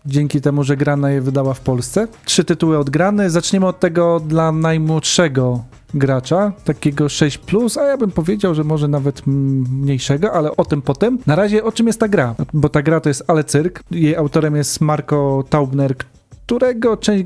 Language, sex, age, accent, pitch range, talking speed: Polish, male, 40-59, native, 145-195 Hz, 180 wpm